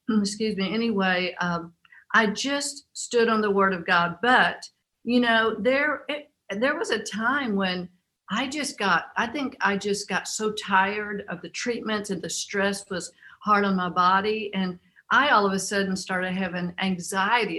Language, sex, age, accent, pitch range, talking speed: English, female, 50-69, American, 185-220 Hz, 175 wpm